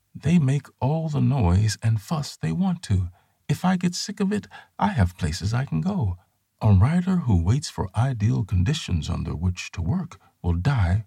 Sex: male